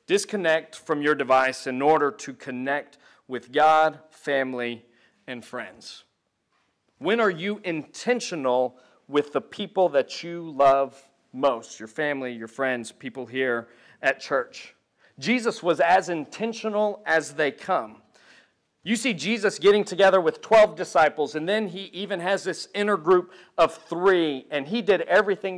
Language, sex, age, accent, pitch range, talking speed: English, male, 40-59, American, 145-190 Hz, 145 wpm